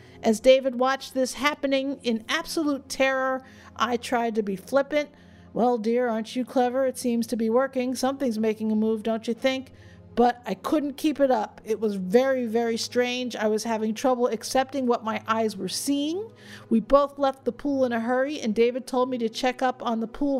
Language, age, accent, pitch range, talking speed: English, 50-69, American, 220-255 Hz, 205 wpm